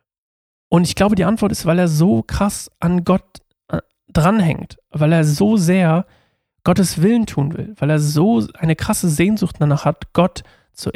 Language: German